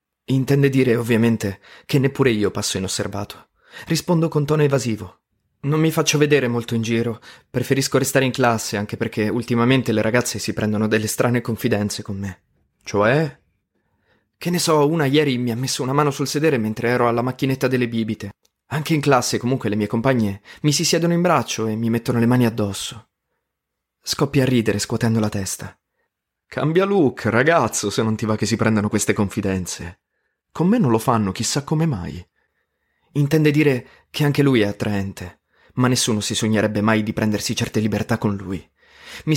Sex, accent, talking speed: male, native, 180 wpm